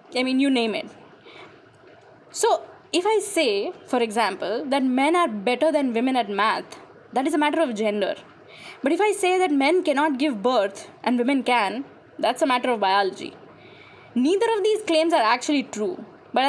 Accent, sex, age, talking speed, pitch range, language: Indian, female, 10-29, 180 wpm, 235-330 Hz, English